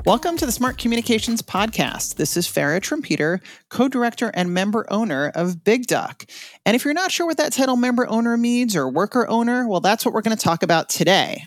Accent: American